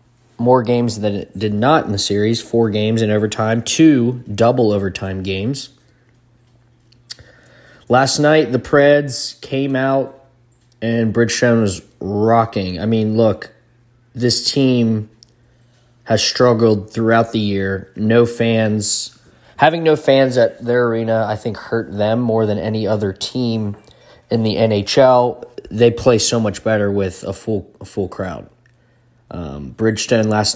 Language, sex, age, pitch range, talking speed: English, male, 20-39, 105-120 Hz, 135 wpm